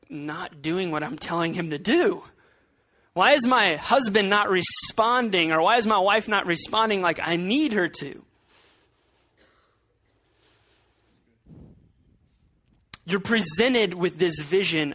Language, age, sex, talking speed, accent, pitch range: English, 20-39, male, 125 wpm, American, 155-215 Hz